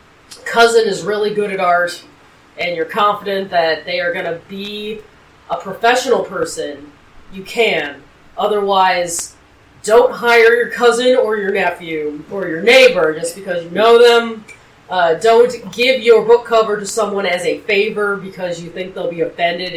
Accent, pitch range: American, 170-235 Hz